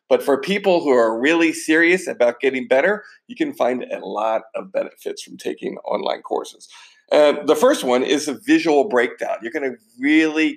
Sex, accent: male, American